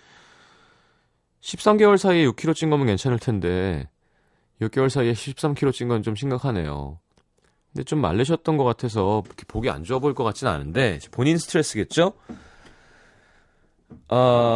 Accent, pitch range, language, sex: native, 100-155 Hz, Korean, male